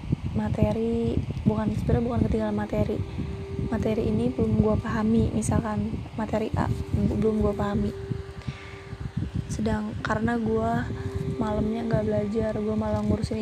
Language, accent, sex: Indonesian, native, female